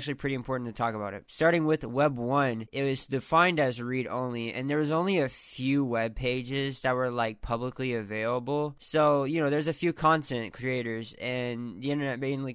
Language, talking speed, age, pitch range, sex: English, 195 wpm, 10-29, 120-140 Hz, male